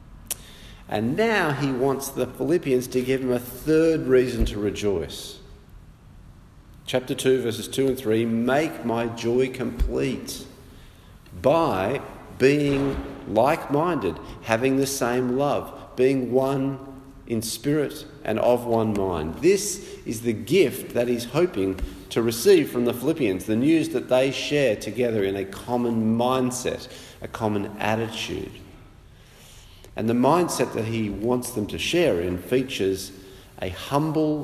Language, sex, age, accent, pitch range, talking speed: English, male, 40-59, Australian, 100-135 Hz, 135 wpm